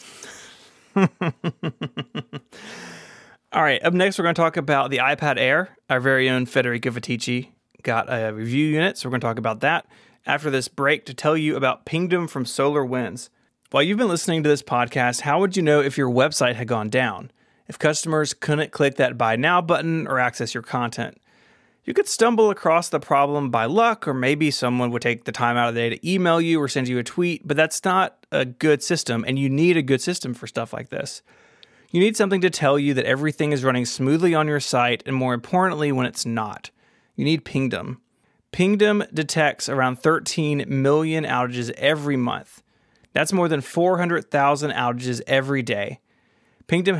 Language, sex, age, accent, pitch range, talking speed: English, male, 30-49, American, 125-165 Hz, 190 wpm